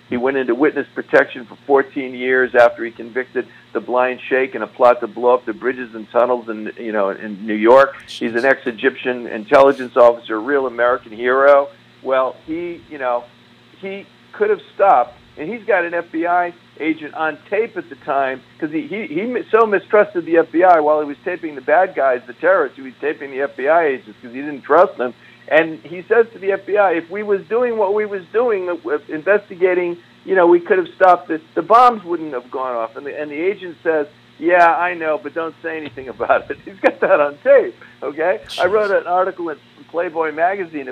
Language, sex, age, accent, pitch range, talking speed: English, male, 50-69, American, 125-180 Hz, 210 wpm